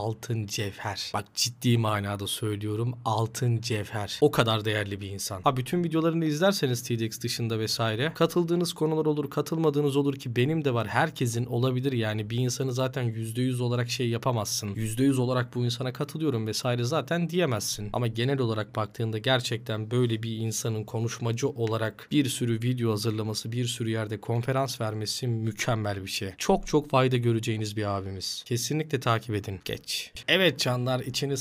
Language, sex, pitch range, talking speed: Turkish, male, 110-130 Hz, 155 wpm